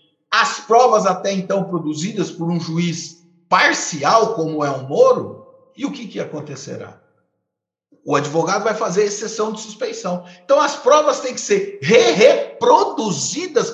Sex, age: male, 50-69